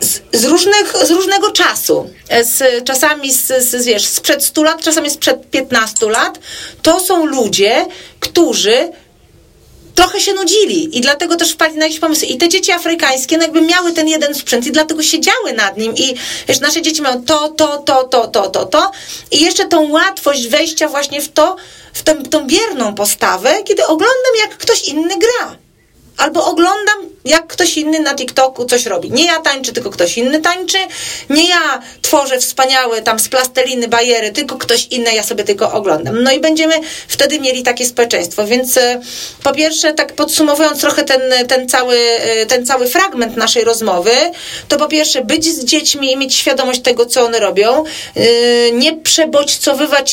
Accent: native